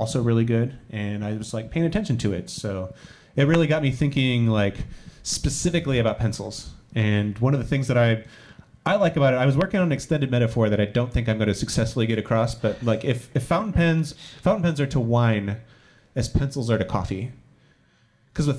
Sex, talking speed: male, 215 wpm